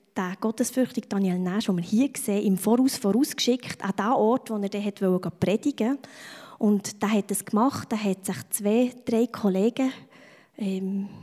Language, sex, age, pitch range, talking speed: English, female, 20-39, 195-235 Hz, 165 wpm